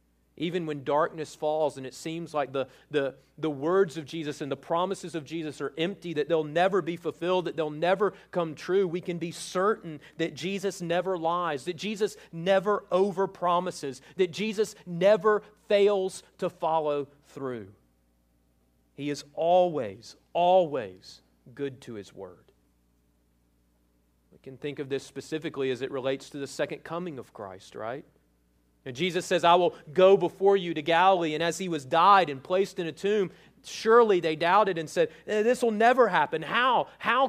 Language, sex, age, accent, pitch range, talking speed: English, male, 40-59, American, 125-180 Hz, 170 wpm